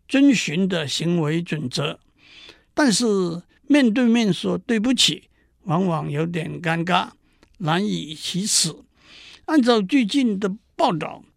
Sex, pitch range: male, 160-220 Hz